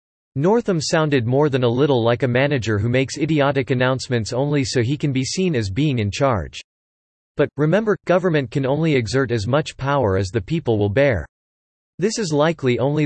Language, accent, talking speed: English, American, 190 wpm